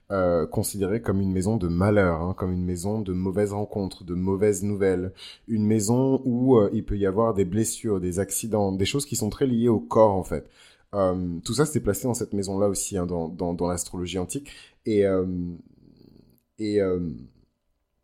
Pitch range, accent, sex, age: 95-115 Hz, French, male, 20-39